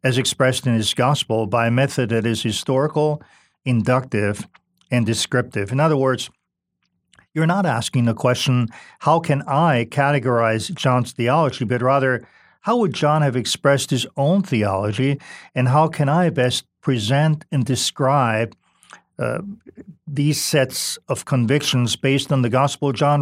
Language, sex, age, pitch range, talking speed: English, male, 50-69, 120-150 Hz, 145 wpm